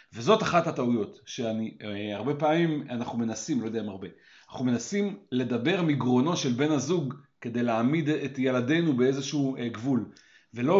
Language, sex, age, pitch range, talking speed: Hebrew, male, 40-59, 125-185 Hz, 140 wpm